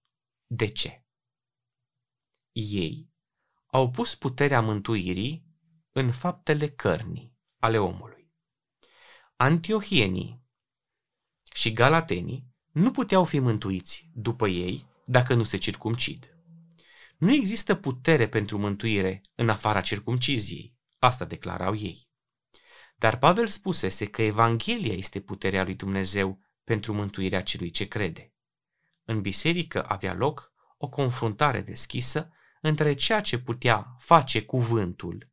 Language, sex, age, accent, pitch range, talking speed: Romanian, male, 30-49, native, 105-145 Hz, 105 wpm